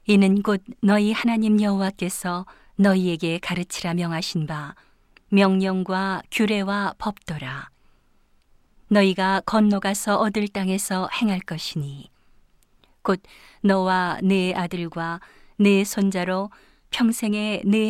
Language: Korean